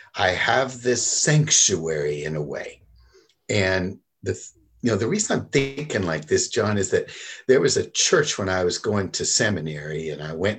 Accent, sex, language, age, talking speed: American, male, English, 60-79, 185 wpm